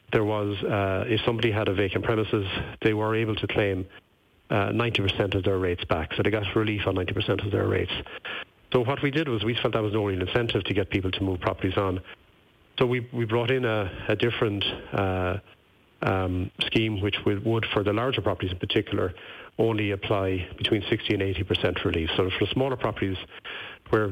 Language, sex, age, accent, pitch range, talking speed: English, male, 40-59, Irish, 95-110 Hz, 205 wpm